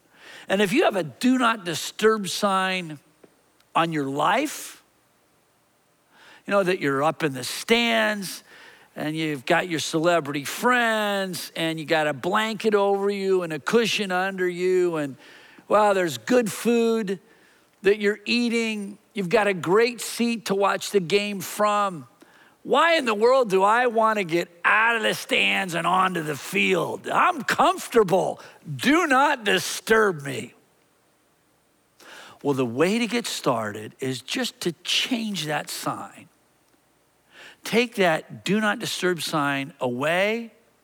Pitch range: 160-220 Hz